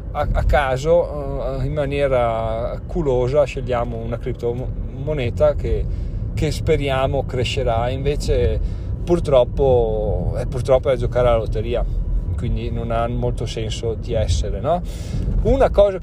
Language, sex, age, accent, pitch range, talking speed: Italian, male, 40-59, native, 115-145 Hz, 110 wpm